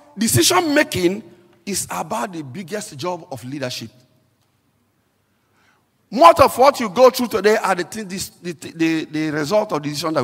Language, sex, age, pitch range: English, male, 50-69, 135-205 Hz